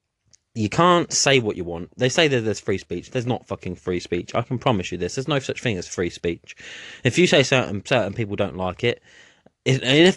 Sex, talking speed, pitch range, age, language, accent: male, 235 wpm, 100-135 Hz, 20-39, English, British